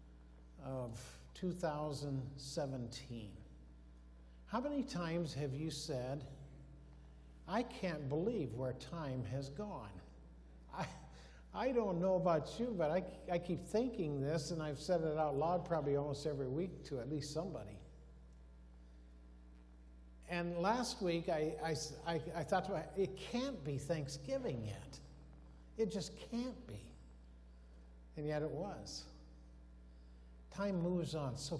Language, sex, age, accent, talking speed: English, male, 60-79, American, 130 wpm